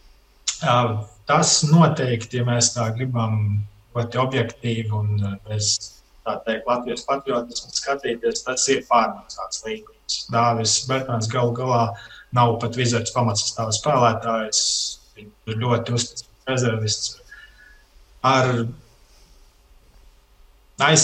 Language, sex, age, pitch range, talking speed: English, male, 20-39, 115-150 Hz, 85 wpm